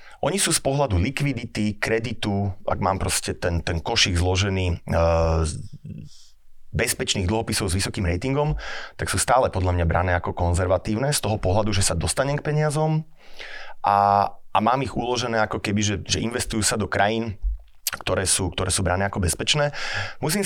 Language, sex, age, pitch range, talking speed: Slovak, male, 30-49, 90-115 Hz, 165 wpm